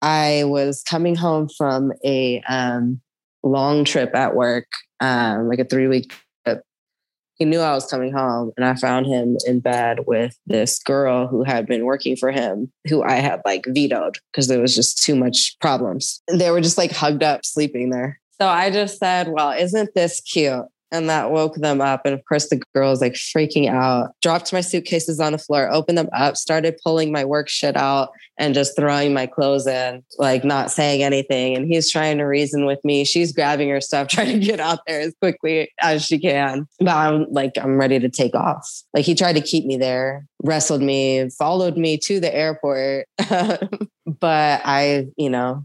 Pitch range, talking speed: 130-160 Hz, 200 wpm